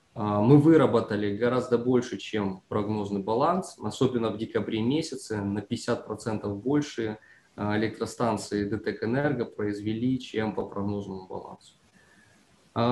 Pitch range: 110-130 Hz